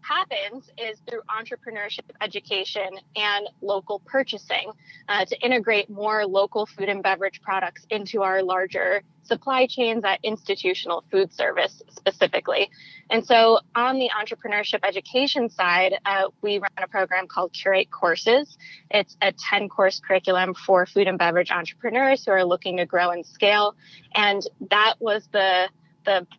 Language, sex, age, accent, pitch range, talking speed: English, female, 20-39, American, 185-220 Hz, 145 wpm